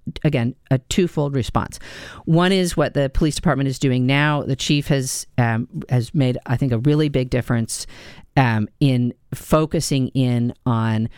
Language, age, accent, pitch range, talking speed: English, 40-59, American, 115-140 Hz, 160 wpm